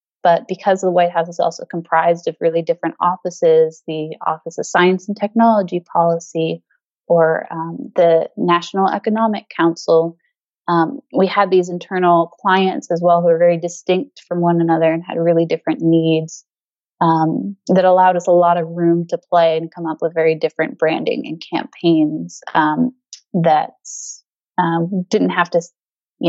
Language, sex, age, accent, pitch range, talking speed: English, female, 20-39, American, 170-200 Hz, 160 wpm